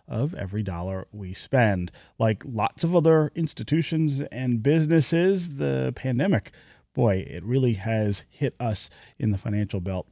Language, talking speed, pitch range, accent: English, 140 wpm, 100-145 Hz, American